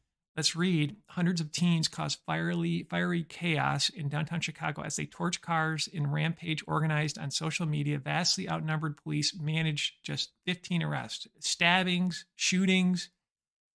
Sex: male